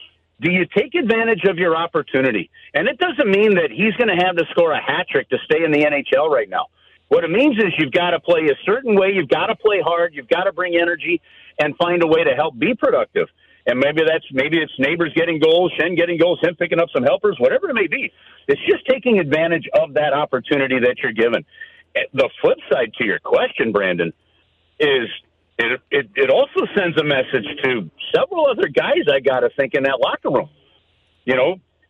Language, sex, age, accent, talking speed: English, male, 50-69, American, 215 wpm